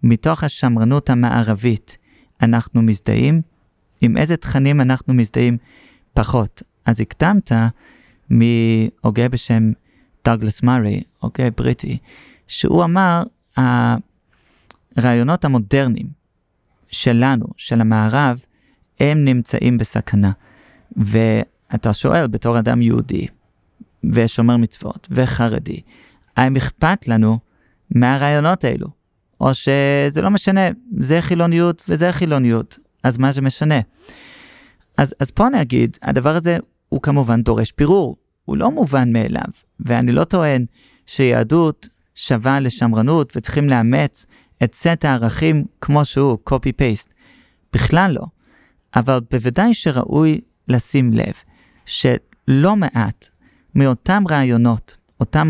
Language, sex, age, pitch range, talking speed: Hebrew, male, 30-49, 115-145 Hz, 105 wpm